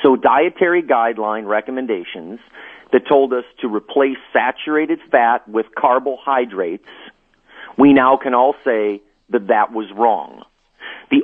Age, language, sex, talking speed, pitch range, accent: 40-59, English, male, 125 wpm, 120-160 Hz, American